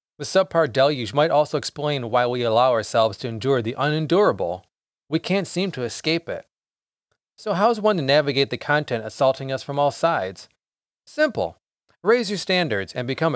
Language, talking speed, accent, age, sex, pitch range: English, 175 wpm, American, 30-49, male, 125-170 Hz